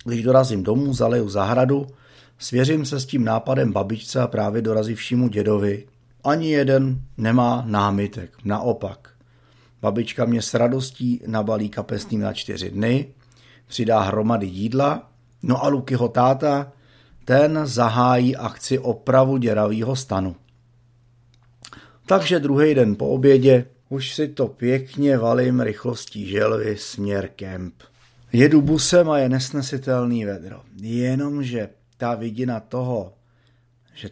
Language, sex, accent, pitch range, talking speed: Czech, male, native, 110-130 Hz, 120 wpm